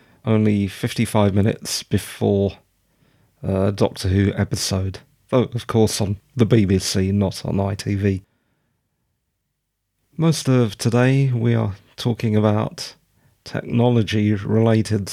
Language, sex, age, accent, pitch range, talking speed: English, male, 40-59, British, 100-130 Hz, 100 wpm